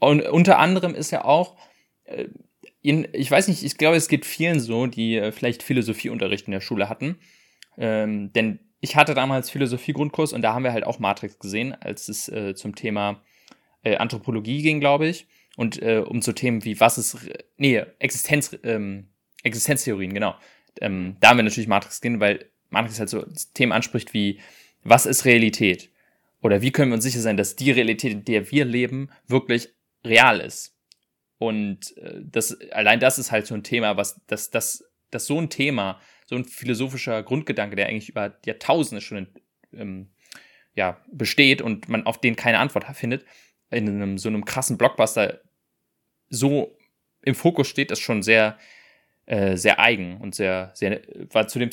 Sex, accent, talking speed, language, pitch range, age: male, German, 180 wpm, German, 105-135 Hz, 20-39